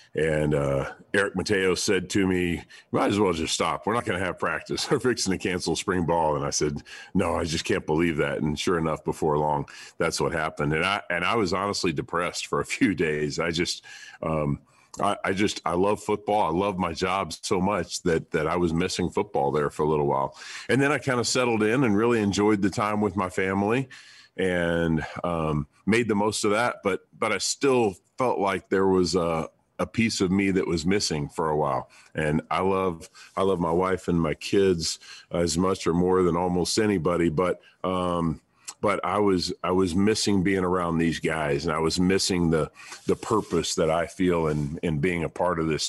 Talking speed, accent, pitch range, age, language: 215 wpm, American, 80-100 Hz, 40-59, English